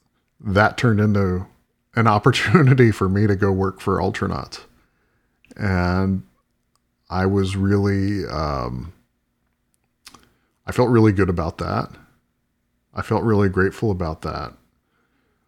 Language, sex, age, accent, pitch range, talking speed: English, male, 40-59, American, 90-110 Hz, 110 wpm